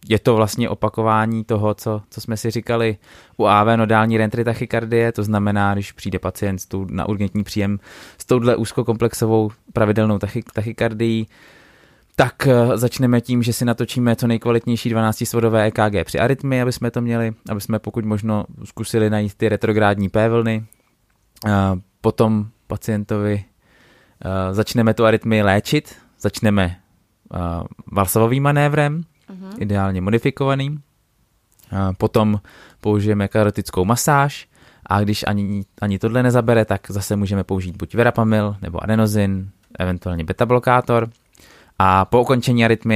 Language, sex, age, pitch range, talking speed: Czech, male, 20-39, 100-115 Hz, 125 wpm